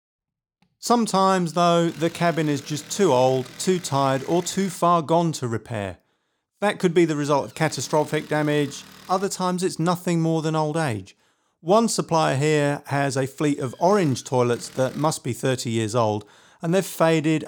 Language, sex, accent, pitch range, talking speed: English, male, British, 130-175 Hz, 170 wpm